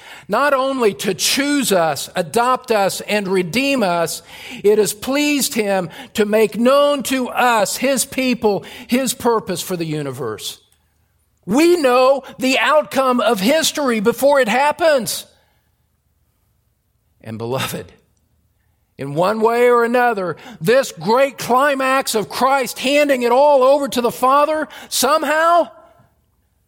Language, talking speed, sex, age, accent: English, 125 wpm, male, 50-69, American